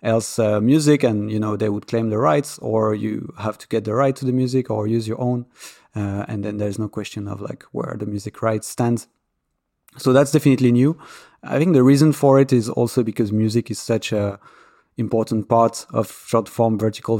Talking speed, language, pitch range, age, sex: 215 wpm, English, 110-120 Hz, 30-49, male